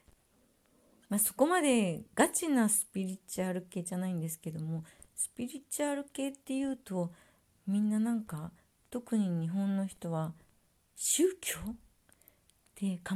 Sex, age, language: female, 40-59, Japanese